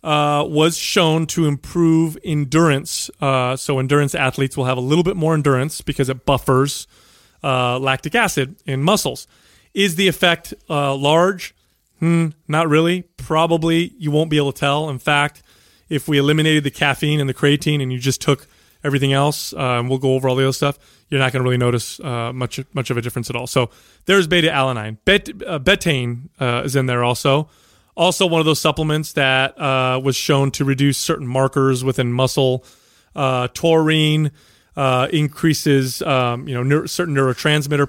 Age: 30-49